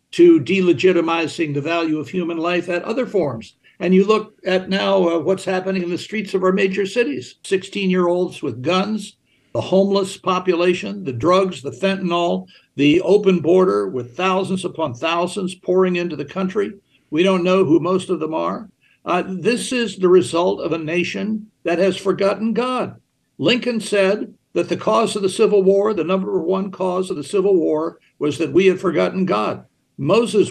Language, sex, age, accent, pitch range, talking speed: English, male, 60-79, American, 175-205 Hz, 180 wpm